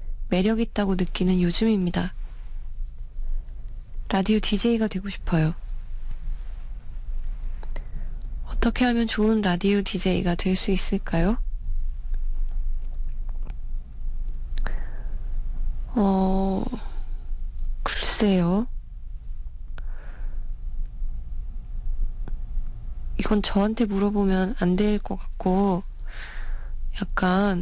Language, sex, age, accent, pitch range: Korean, female, 20-39, native, 160-205 Hz